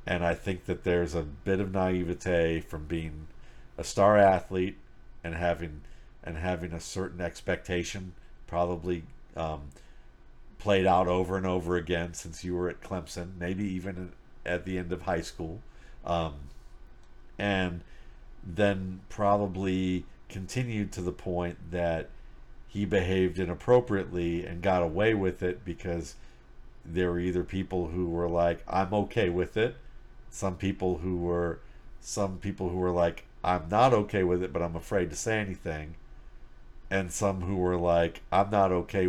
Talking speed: 150 wpm